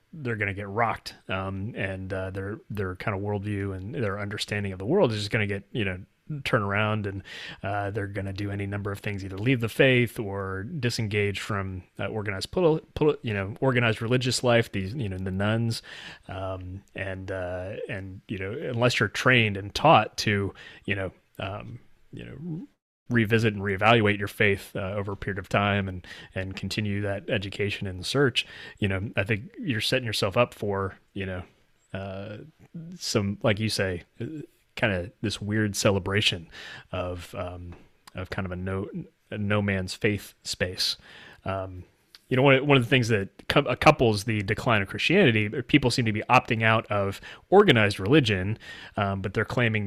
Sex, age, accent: male, 30-49, American